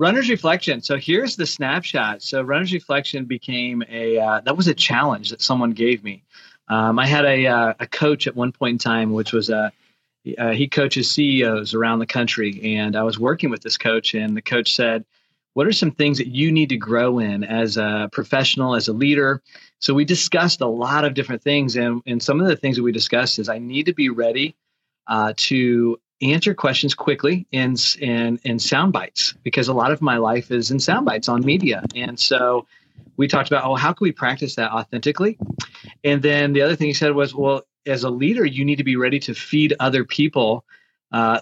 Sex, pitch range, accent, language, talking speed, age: male, 120-145 Hz, American, English, 215 wpm, 40-59